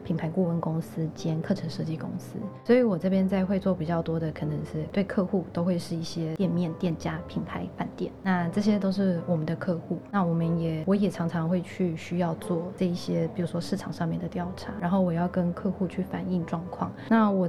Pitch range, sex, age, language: 170-195 Hz, female, 20-39, Chinese